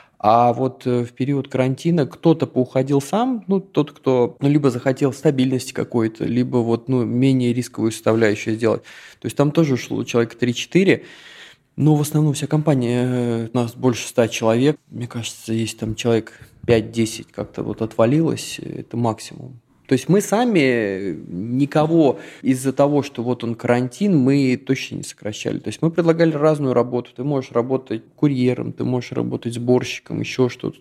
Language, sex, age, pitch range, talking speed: Russian, male, 20-39, 115-140 Hz, 160 wpm